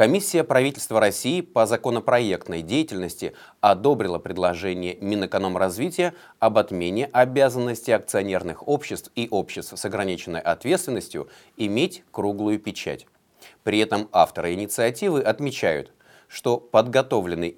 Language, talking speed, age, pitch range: Russian, 100 wpm, 30-49, 100-140 Hz